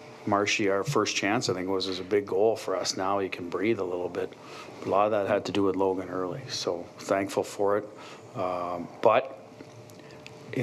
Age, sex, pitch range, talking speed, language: 40-59, male, 100-120 Hz, 210 wpm, English